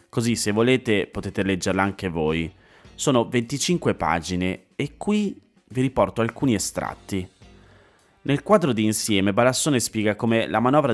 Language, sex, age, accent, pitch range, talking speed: Italian, male, 30-49, native, 100-125 Hz, 135 wpm